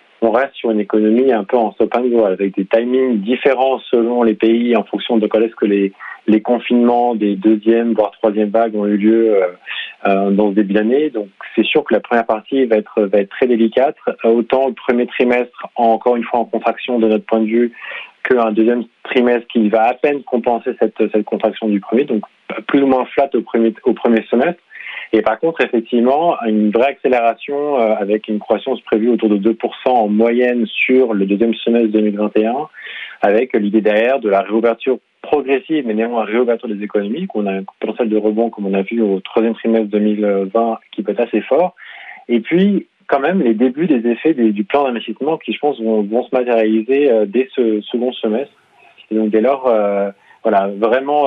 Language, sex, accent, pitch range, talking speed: French, male, French, 110-125 Hz, 200 wpm